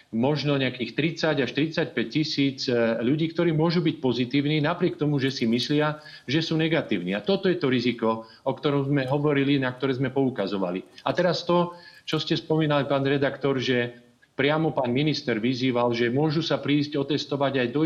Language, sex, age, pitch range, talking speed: Slovak, male, 40-59, 125-155 Hz, 175 wpm